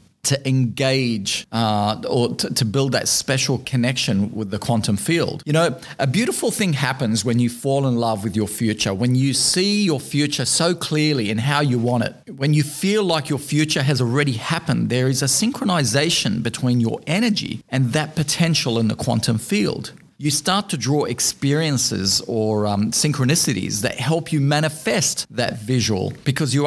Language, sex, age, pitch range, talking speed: English, male, 40-59, 115-150 Hz, 175 wpm